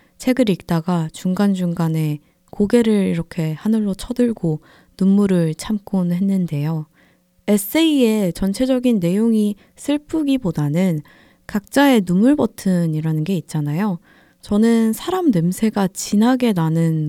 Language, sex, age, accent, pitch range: Korean, female, 20-39, native, 170-235 Hz